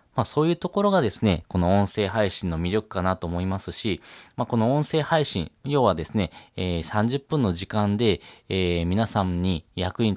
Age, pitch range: 20-39, 90-115 Hz